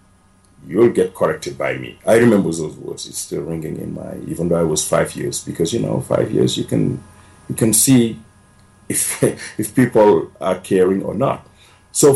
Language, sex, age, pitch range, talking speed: English, male, 50-69, 85-105 Hz, 190 wpm